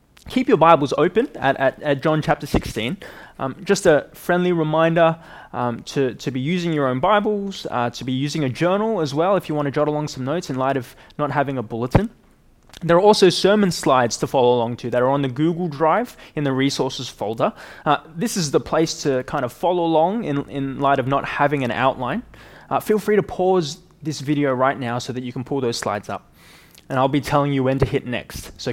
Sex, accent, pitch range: male, Australian, 125-165 Hz